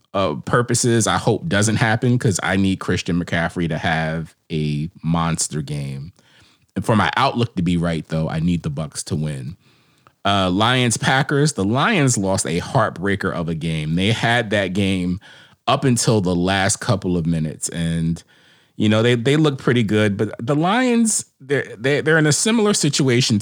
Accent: American